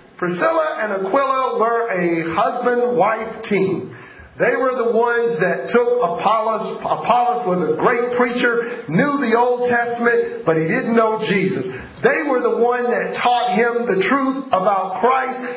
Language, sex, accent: English, male, American